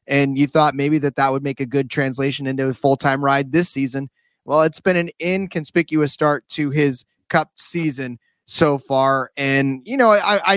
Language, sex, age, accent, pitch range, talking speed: English, male, 20-39, American, 135-170 Hz, 200 wpm